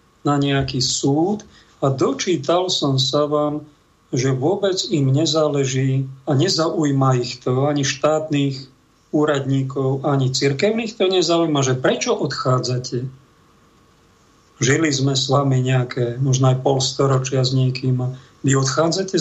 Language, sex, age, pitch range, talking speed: Slovak, male, 50-69, 140-170 Hz, 120 wpm